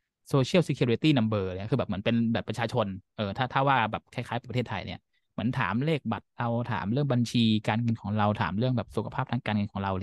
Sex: male